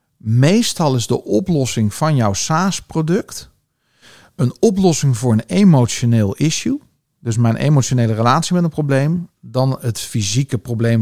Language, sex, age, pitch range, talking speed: Dutch, male, 50-69, 115-145 Hz, 130 wpm